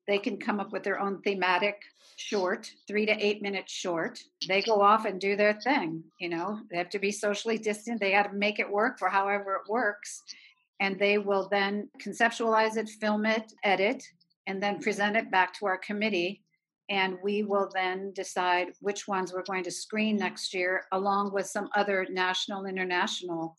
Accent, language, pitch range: American, English, 190-220 Hz